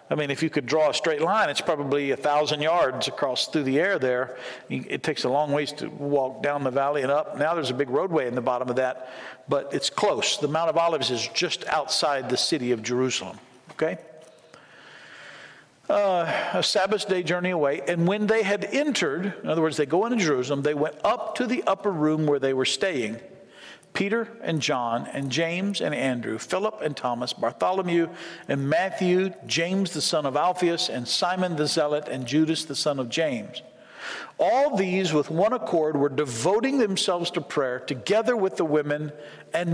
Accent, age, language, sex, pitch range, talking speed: American, 50-69, English, male, 140-185 Hz, 195 wpm